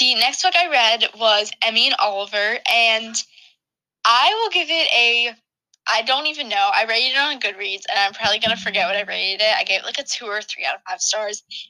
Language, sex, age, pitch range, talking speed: English, female, 10-29, 210-275 Hz, 235 wpm